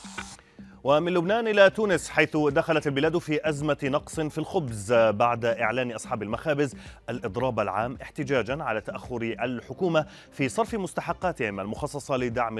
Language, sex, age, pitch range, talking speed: Arabic, male, 30-49, 110-150 Hz, 130 wpm